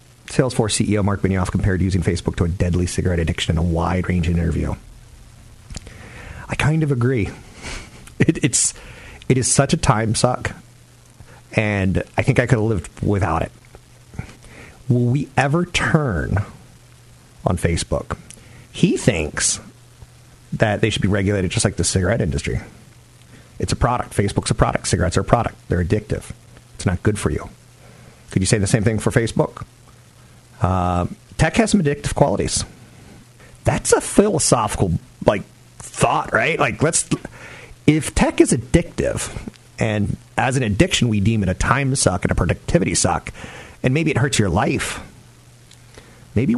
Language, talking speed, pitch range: English, 150 wpm, 95-125 Hz